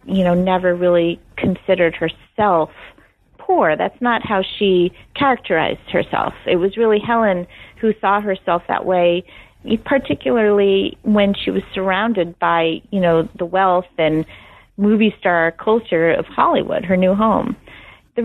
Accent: American